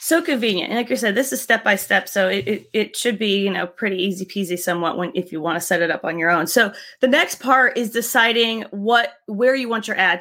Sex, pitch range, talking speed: female, 190-230 Hz, 270 wpm